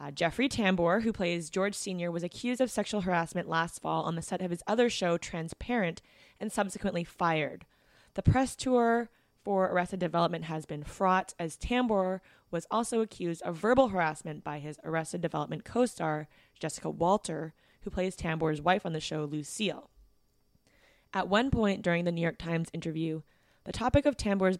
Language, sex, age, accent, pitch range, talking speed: English, female, 20-39, American, 165-205 Hz, 170 wpm